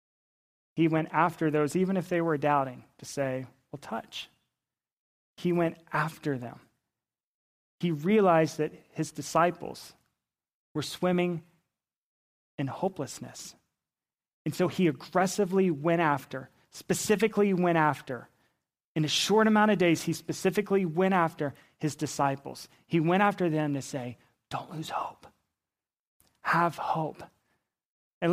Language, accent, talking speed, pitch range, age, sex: English, American, 125 wpm, 145-180 Hz, 30-49, male